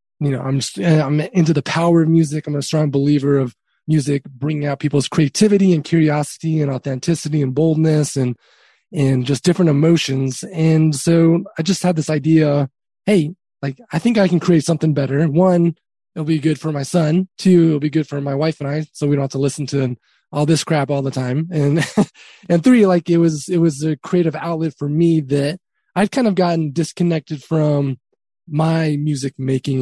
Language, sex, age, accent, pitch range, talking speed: English, male, 20-39, American, 140-165 Hz, 200 wpm